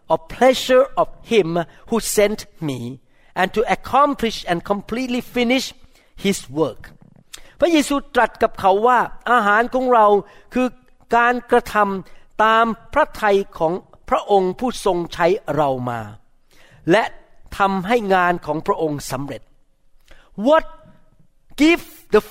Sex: male